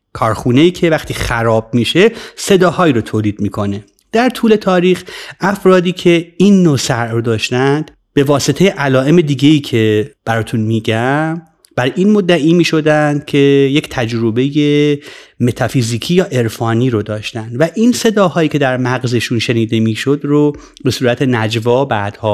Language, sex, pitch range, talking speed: Persian, male, 115-155 Hz, 135 wpm